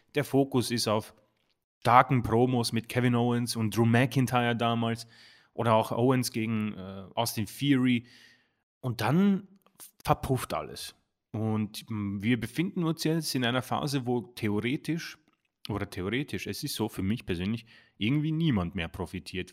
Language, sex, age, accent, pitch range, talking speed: German, male, 30-49, German, 110-135 Hz, 140 wpm